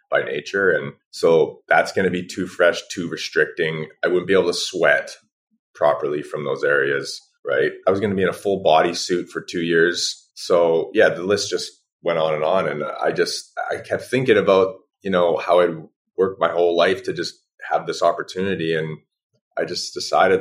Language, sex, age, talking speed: English, male, 30-49, 205 wpm